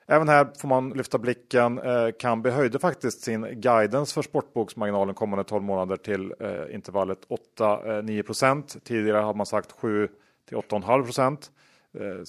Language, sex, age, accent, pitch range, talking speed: Swedish, male, 30-49, Norwegian, 100-125 Hz, 115 wpm